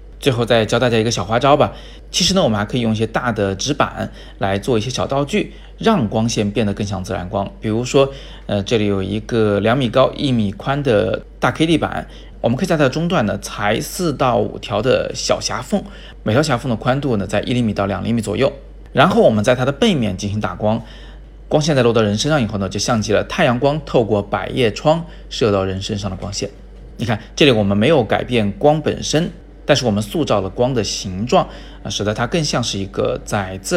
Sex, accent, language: male, native, Chinese